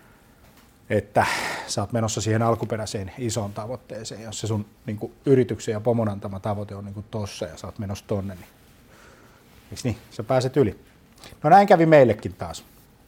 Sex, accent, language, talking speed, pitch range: male, native, Finnish, 160 wpm, 105-130 Hz